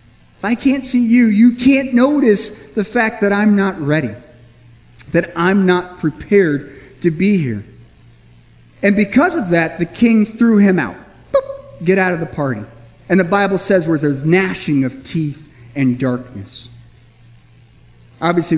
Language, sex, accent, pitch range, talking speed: English, male, American, 140-225 Hz, 150 wpm